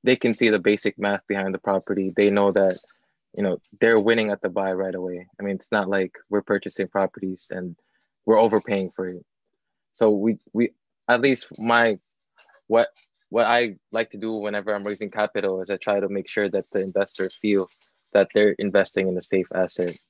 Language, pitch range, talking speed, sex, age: English, 95-110 Hz, 200 wpm, male, 20-39